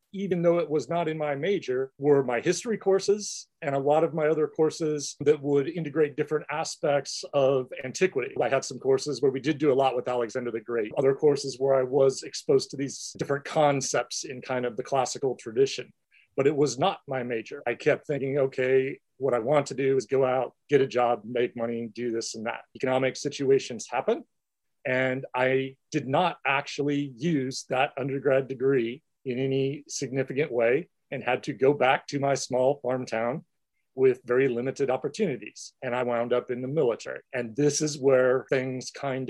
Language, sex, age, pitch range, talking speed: English, male, 40-59, 130-155 Hz, 190 wpm